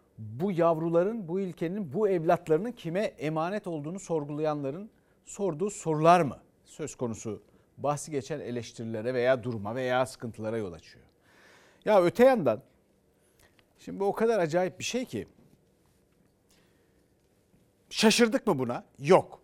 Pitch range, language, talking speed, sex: 155-225 Hz, Turkish, 120 wpm, male